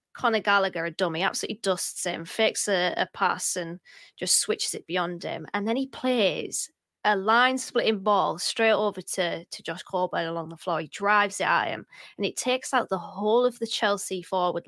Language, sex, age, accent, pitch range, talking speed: English, female, 20-39, British, 180-215 Hz, 200 wpm